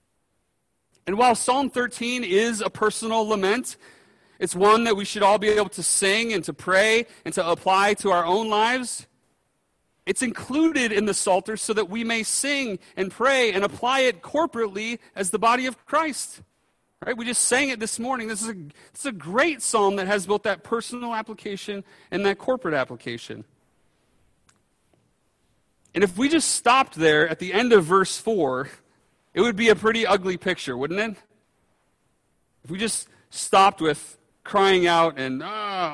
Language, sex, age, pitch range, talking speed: English, male, 40-59, 175-230 Hz, 175 wpm